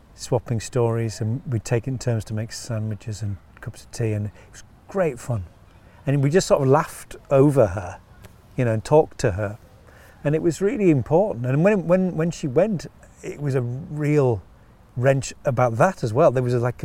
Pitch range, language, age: 105-130 Hz, English, 40-59